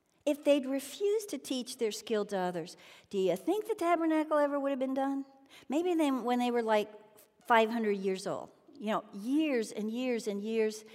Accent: American